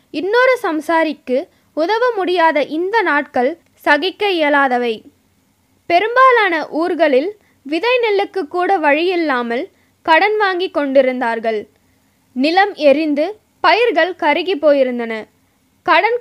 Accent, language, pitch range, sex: native, Tamil, 280-385 Hz, female